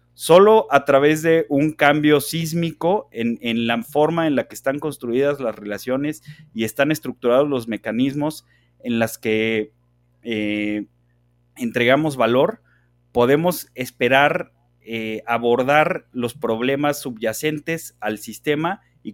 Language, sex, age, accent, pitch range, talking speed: Spanish, male, 30-49, Mexican, 115-150 Hz, 120 wpm